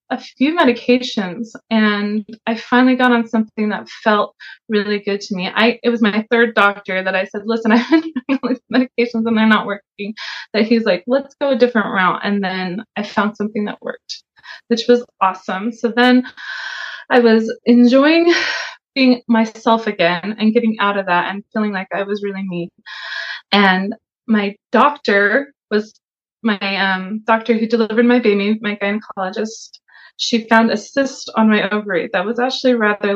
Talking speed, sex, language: 175 wpm, female, English